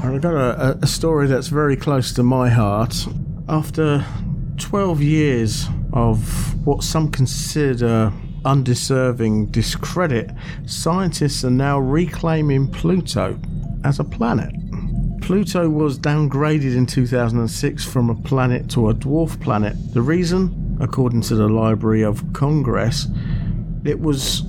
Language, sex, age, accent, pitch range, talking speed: English, male, 50-69, British, 120-150 Hz, 125 wpm